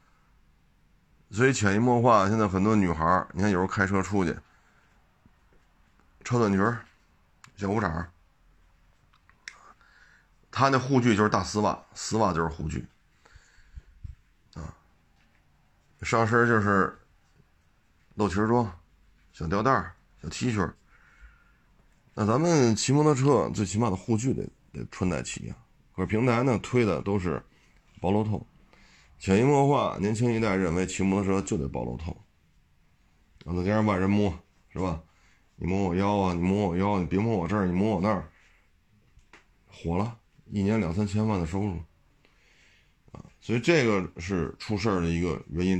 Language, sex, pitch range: Chinese, male, 85-110 Hz